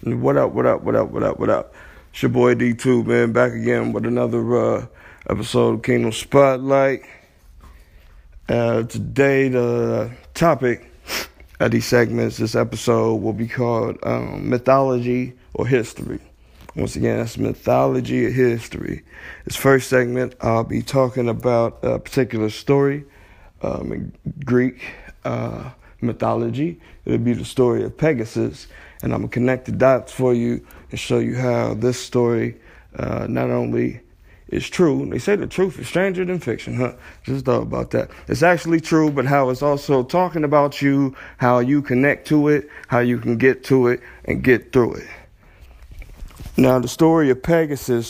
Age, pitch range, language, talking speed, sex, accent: 50-69, 115-135 Hz, English, 165 wpm, male, American